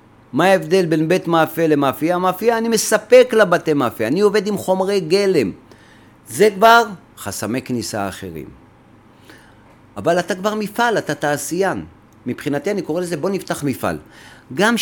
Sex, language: male, Hebrew